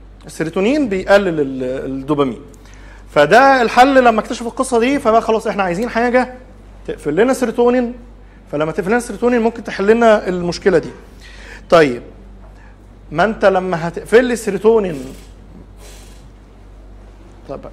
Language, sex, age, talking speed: Arabic, male, 50-69, 115 wpm